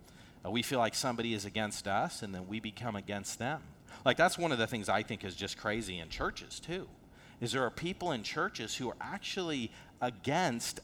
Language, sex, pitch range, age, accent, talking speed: English, male, 105-155 Hz, 40-59, American, 205 wpm